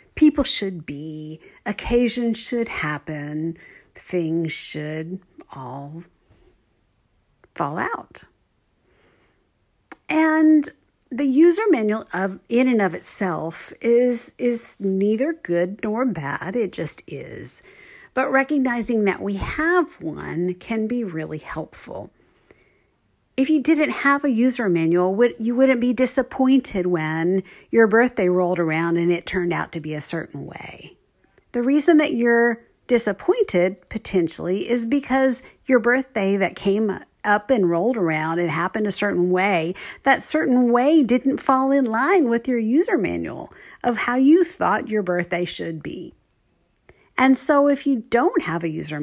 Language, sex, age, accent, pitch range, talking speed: English, female, 50-69, American, 175-260 Hz, 135 wpm